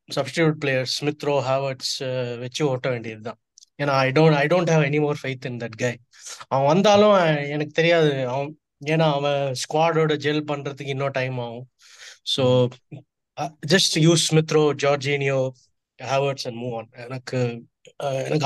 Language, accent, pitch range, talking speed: Tamil, native, 125-150 Hz, 160 wpm